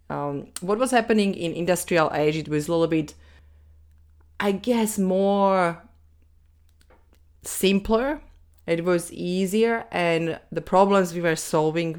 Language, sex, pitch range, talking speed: English, female, 145-175 Hz, 125 wpm